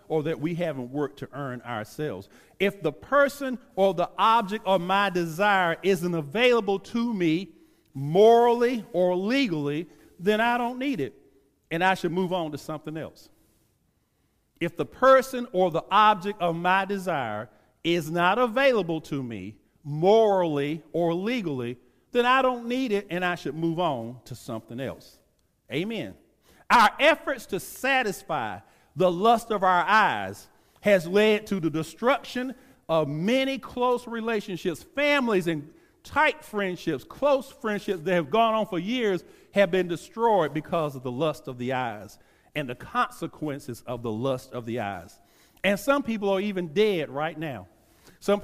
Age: 50-69